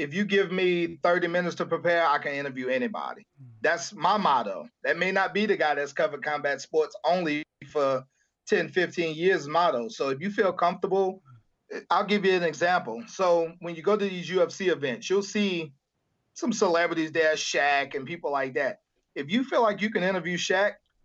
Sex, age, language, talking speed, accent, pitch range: male, 30-49, English, 190 wpm, American, 150-195 Hz